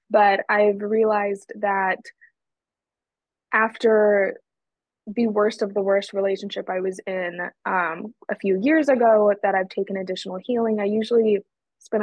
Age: 20-39